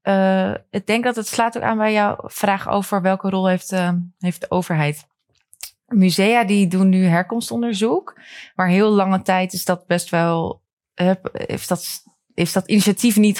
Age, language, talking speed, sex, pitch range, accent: 20-39, Dutch, 175 wpm, female, 175-210 Hz, Dutch